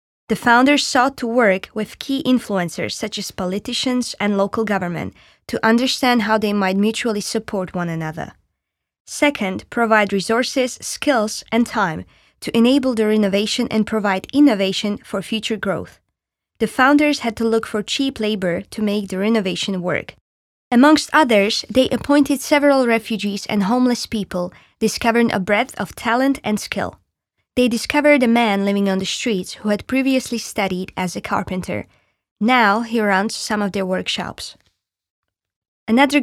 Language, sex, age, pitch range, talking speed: Slovak, female, 20-39, 195-245 Hz, 150 wpm